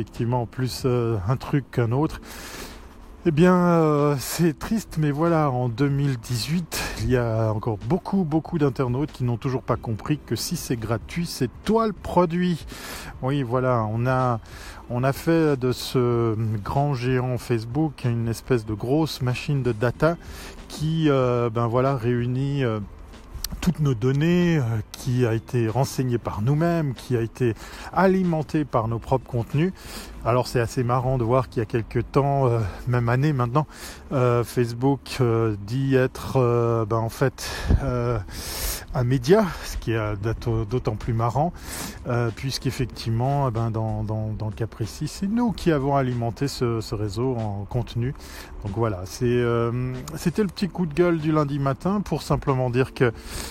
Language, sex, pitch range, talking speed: French, male, 115-145 Hz, 165 wpm